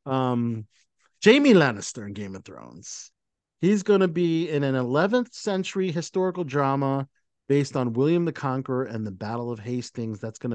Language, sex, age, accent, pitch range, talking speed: English, male, 50-69, American, 120-165 Hz, 165 wpm